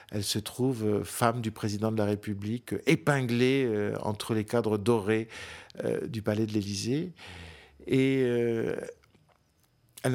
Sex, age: male, 50-69